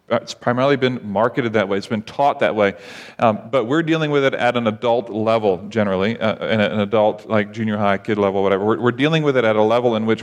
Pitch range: 110-130 Hz